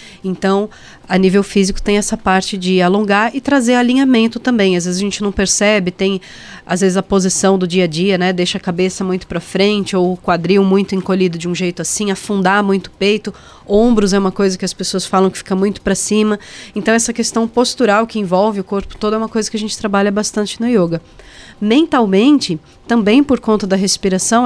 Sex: female